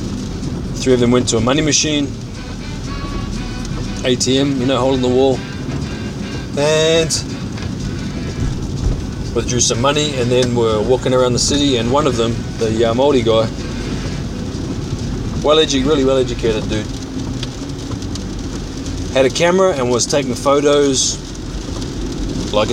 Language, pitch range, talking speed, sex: English, 115-135 Hz, 120 wpm, male